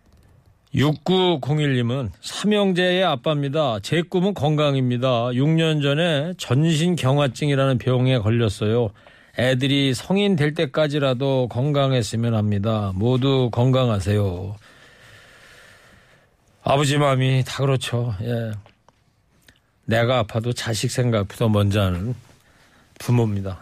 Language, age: Korean, 40-59